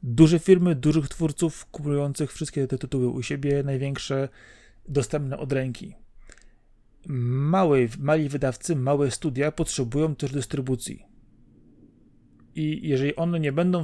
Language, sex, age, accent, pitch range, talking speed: Polish, male, 30-49, native, 130-165 Hz, 115 wpm